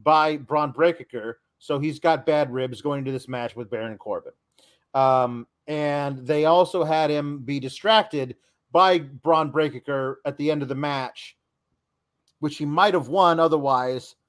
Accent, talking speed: American, 160 wpm